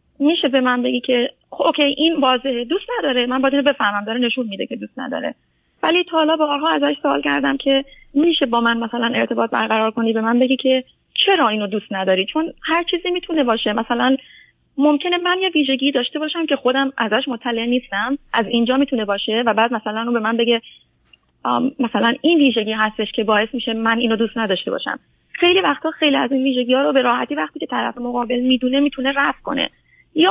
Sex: female